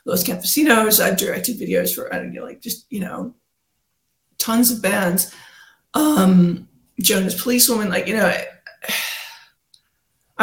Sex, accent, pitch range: female, American, 185-240 Hz